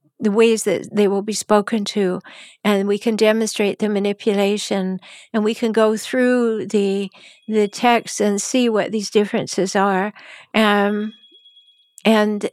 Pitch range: 210-245 Hz